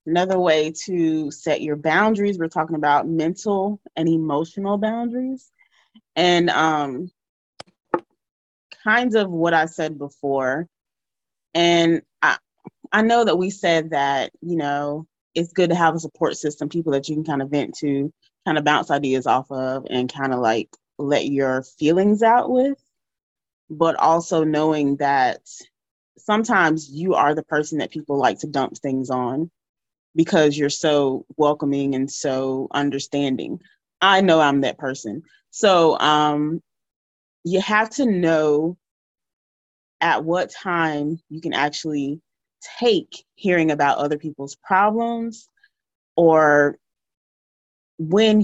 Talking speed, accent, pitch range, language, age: 135 wpm, American, 145-180 Hz, English, 20-39